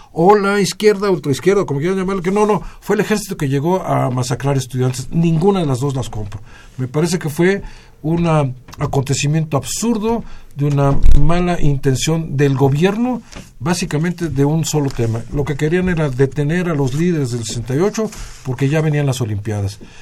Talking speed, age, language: 170 wpm, 50-69, Spanish